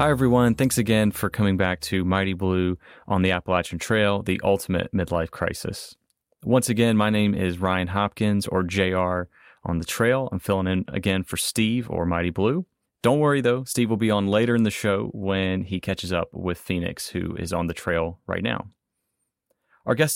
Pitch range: 90-110 Hz